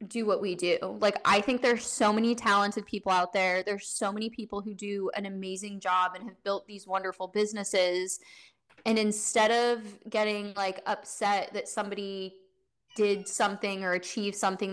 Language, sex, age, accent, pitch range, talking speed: English, female, 10-29, American, 195-230 Hz, 175 wpm